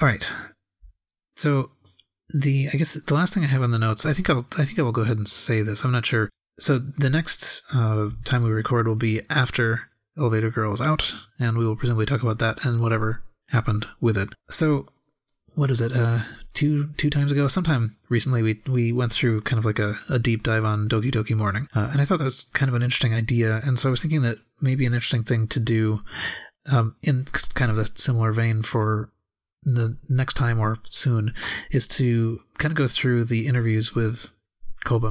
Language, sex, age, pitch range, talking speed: English, male, 30-49, 110-135 Hz, 215 wpm